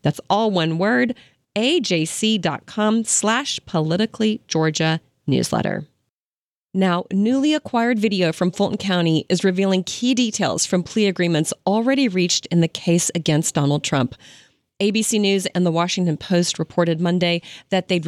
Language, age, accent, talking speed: English, 30-49, American, 135 wpm